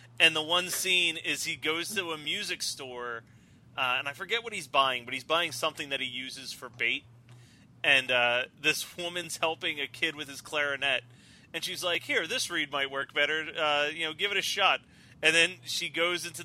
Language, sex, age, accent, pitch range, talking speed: English, male, 30-49, American, 135-175 Hz, 210 wpm